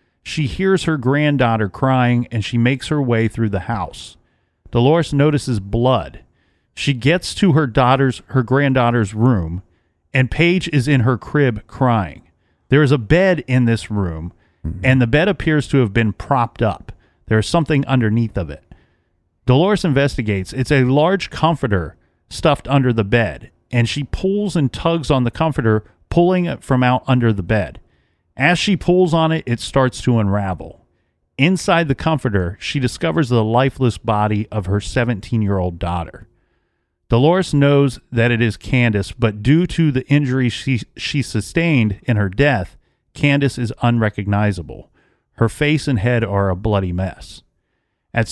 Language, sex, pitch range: English, male, 105-145 Hz